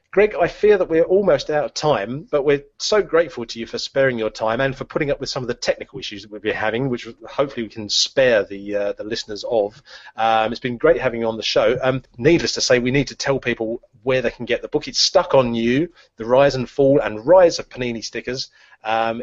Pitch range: 115-140 Hz